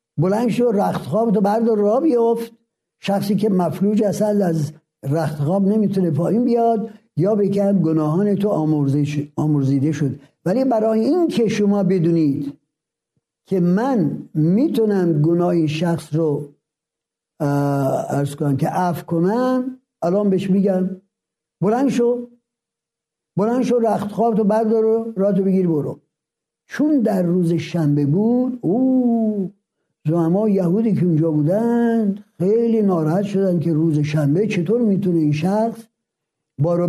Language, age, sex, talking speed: Persian, 60-79, male, 120 wpm